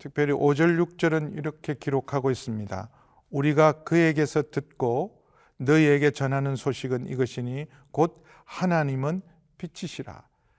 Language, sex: Korean, male